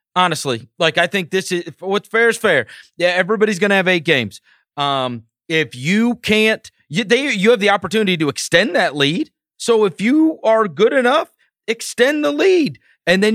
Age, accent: 30-49, American